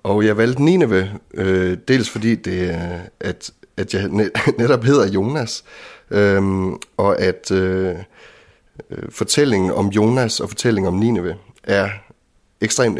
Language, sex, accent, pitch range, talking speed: Danish, male, native, 95-115 Hz, 110 wpm